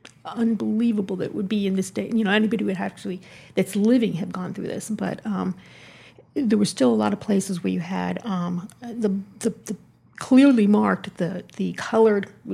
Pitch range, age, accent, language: 190-220 Hz, 50-69, American, English